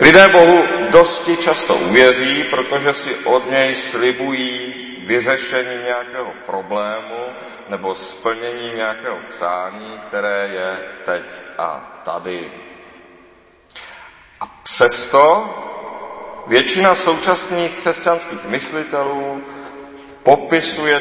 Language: Czech